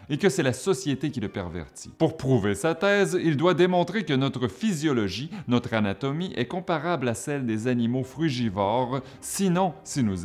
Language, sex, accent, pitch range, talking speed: French, male, French, 105-145 Hz, 175 wpm